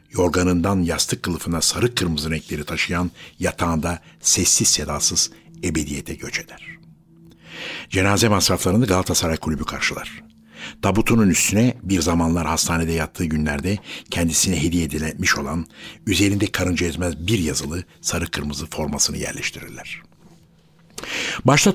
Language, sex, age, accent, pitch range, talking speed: Turkish, male, 60-79, native, 80-110 Hz, 110 wpm